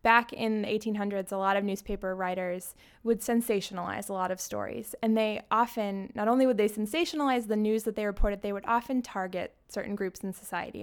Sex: female